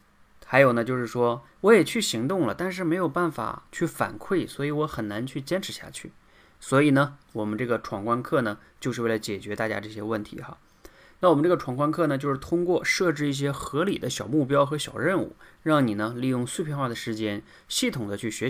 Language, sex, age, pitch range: Chinese, male, 20-39, 110-150 Hz